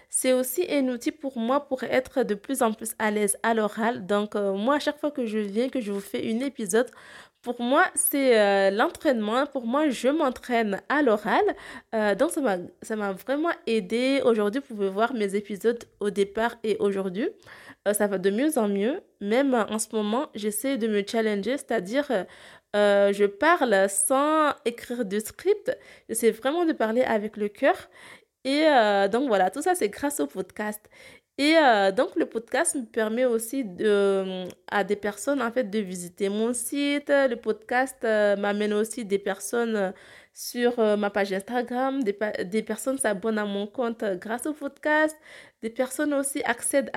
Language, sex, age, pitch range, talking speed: French, female, 20-39, 210-275 Hz, 180 wpm